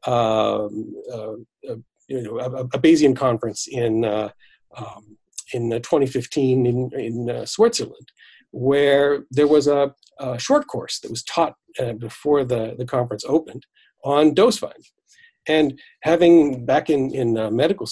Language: English